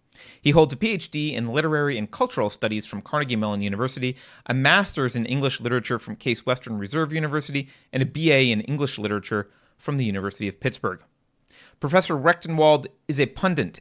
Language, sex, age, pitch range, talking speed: English, male, 30-49, 110-145 Hz, 170 wpm